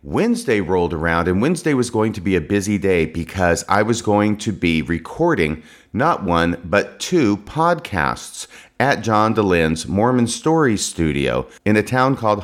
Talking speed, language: 165 wpm, English